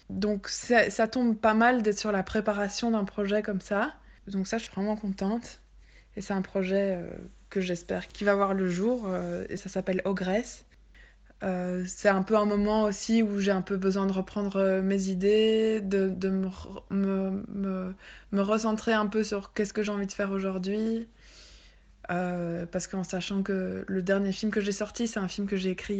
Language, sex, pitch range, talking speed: French, female, 190-215 Hz, 205 wpm